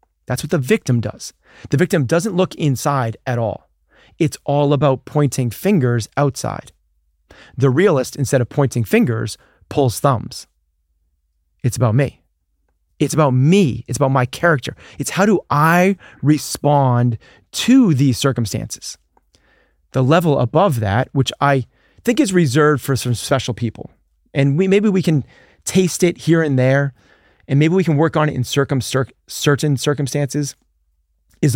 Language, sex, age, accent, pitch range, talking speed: English, male, 30-49, American, 115-150 Hz, 150 wpm